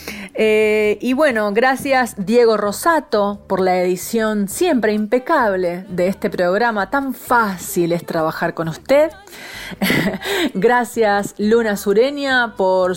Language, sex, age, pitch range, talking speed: Spanish, female, 30-49, 190-255 Hz, 115 wpm